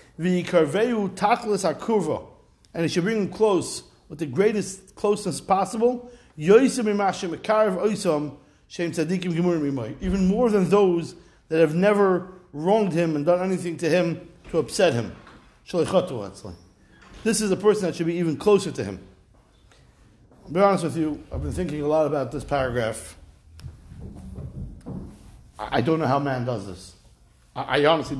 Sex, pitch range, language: male, 130-180 Hz, English